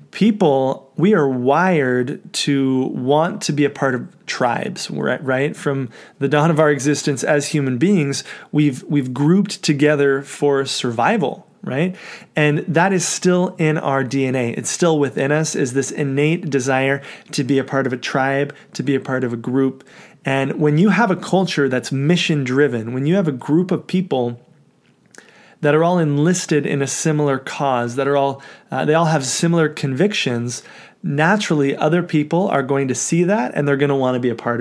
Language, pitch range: English, 135-165 Hz